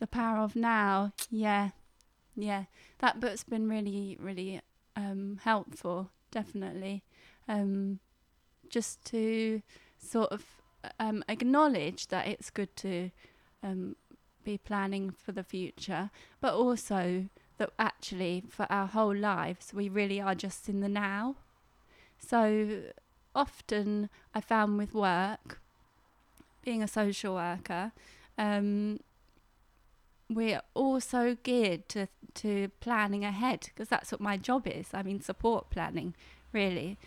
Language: English